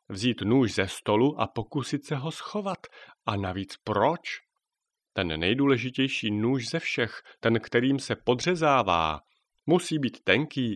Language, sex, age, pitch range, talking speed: Czech, male, 40-59, 105-140 Hz, 135 wpm